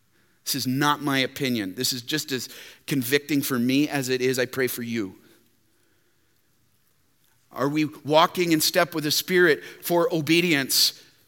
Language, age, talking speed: English, 40-59, 155 wpm